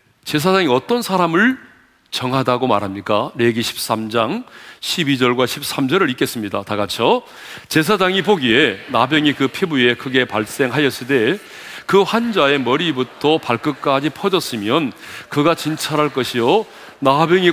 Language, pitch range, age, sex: Korean, 135-210 Hz, 40-59, male